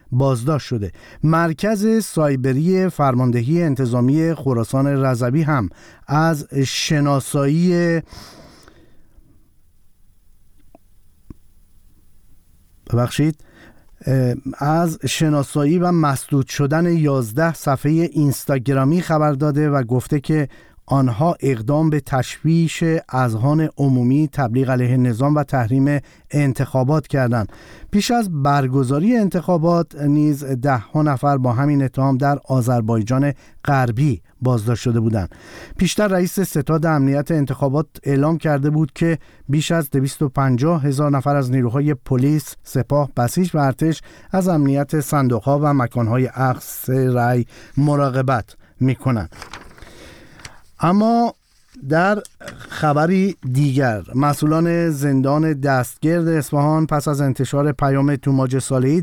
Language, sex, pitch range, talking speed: Persian, male, 130-155 Hz, 100 wpm